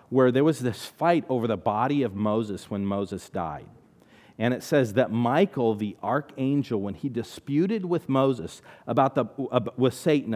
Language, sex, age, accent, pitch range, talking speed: English, male, 50-69, American, 110-155 Hz, 170 wpm